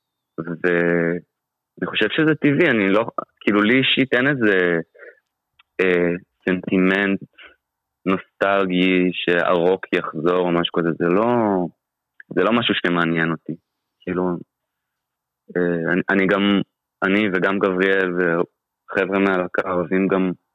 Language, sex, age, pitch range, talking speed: Hebrew, male, 20-39, 85-105 Hz, 105 wpm